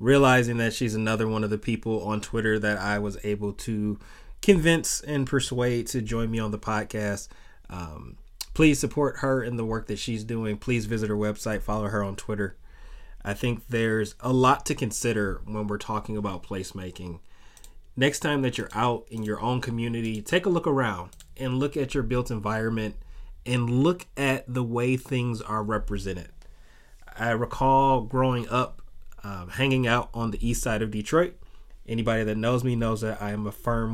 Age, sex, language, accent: 30-49, male, English, American